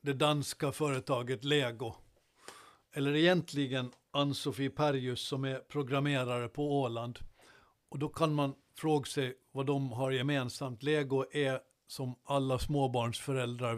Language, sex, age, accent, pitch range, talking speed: Swedish, male, 60-79, native, 130-150 Hz, 120 wpm